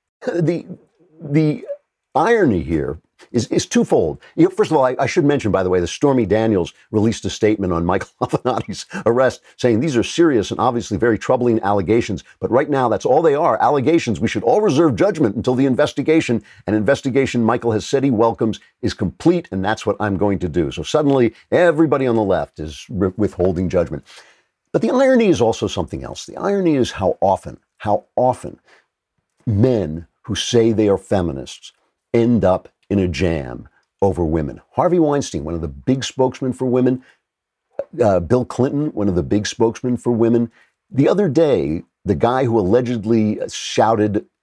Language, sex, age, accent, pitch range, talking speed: English, male, 50-69, American, 100-125 Hz, 175 wpm